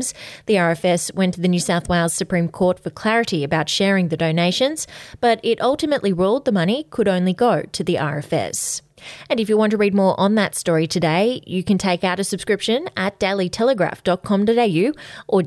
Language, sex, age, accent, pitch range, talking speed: English, female, 20-39, Australian, 165-200 Hz, 185 wpm